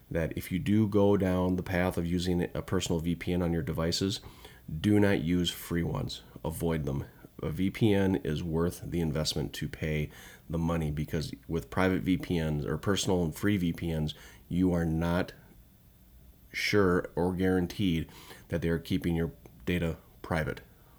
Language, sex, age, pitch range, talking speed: English, male, 30-49, 80-95 Hz, 155 wpm